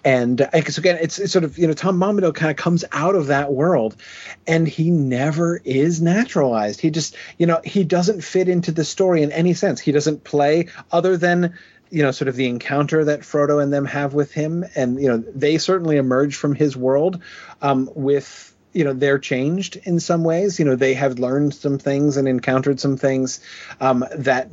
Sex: male